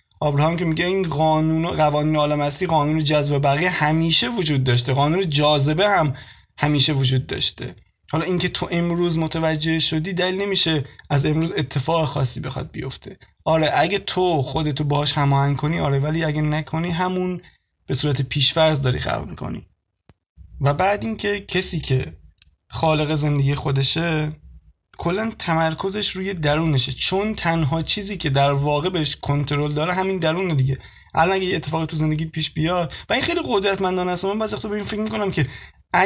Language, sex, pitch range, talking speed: Persian, male, 145-175 Hz, 160 wpm